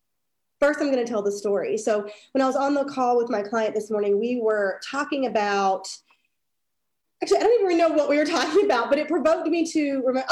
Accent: American